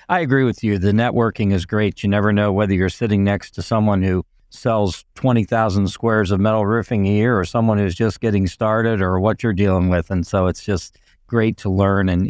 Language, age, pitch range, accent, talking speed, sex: English, 50-69, 100-130 Hz, American, 220 wpm, male